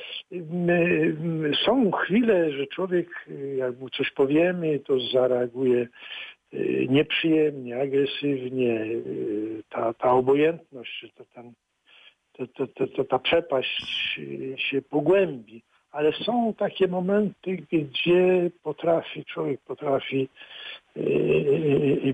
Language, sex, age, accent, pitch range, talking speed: Polish, male, 60-79, native, 135-180 Hz, 85 wpm